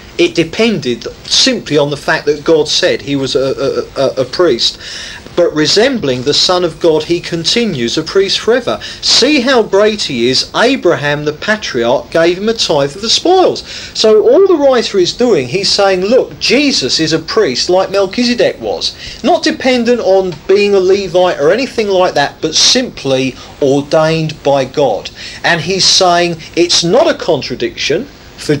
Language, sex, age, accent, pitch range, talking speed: English, male, 40-59, British, 140-220 Hz, 170 wpm